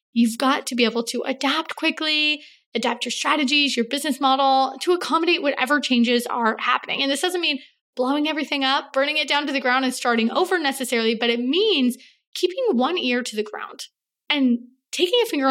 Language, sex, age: English, female, 20-39